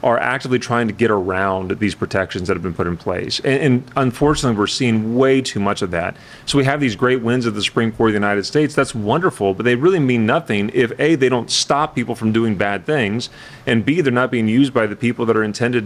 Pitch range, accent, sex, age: 110-140 Hz, American, male, 30-49